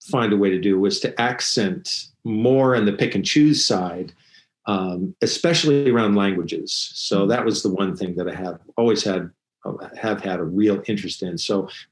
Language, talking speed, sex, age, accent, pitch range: English, 190 wpm, male, 50-69, American, 100-120 Hz